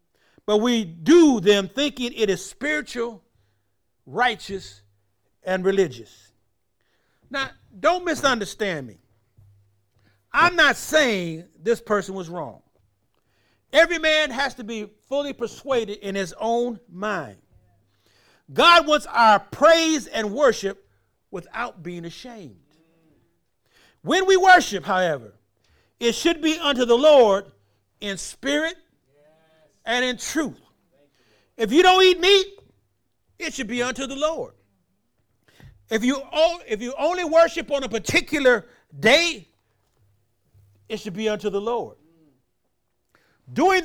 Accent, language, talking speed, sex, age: American, English, 115 wpm, male, 50-69